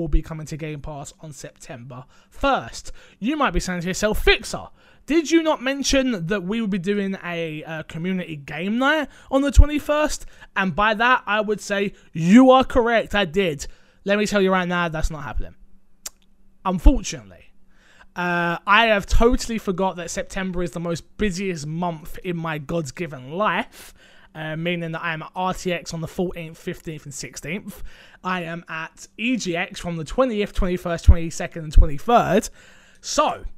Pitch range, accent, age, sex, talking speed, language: 160-200 Hz, British, 20-39, male, 170 wpm, English